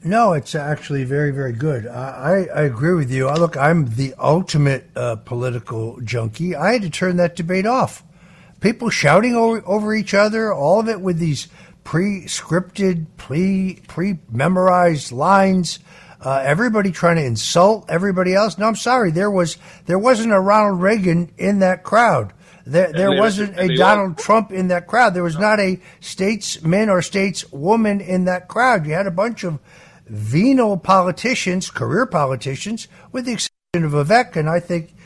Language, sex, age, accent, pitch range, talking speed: English, male, 60-79, American, 160-210 Hz, 170 wpm